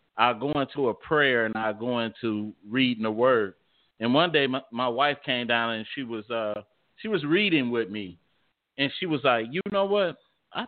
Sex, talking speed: male, 210 wpm